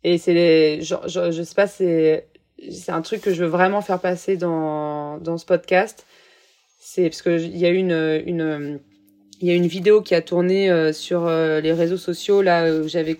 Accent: French